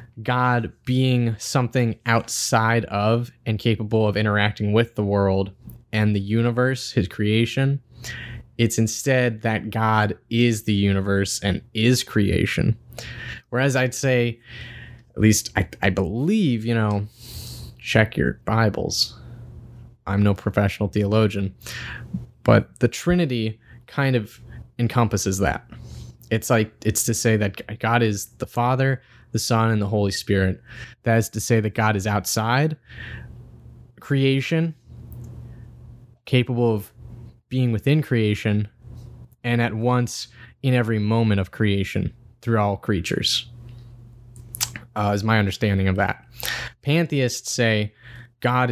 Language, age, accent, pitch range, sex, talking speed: English, 20-39, American, 105-120 Hz, male, 125 wpm